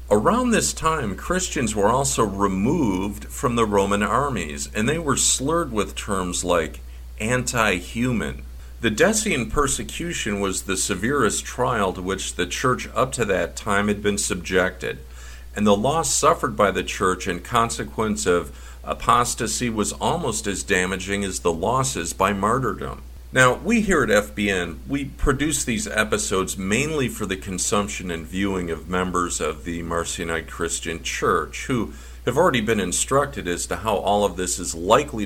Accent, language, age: American, English, 50-69